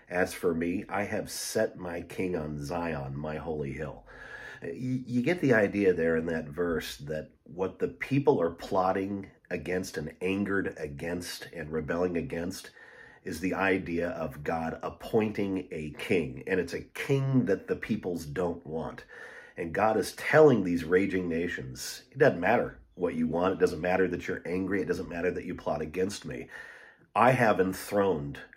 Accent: American